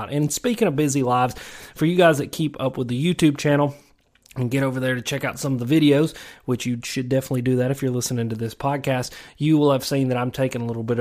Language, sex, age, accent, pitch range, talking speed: English, male, 30-49, American, 115-135 Hz, 260 wpm